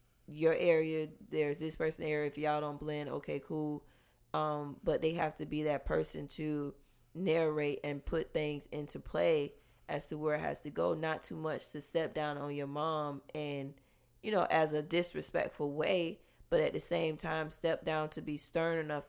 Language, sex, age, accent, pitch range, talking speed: English, female, 20-39, American, 140-155 Hz, 190 wpm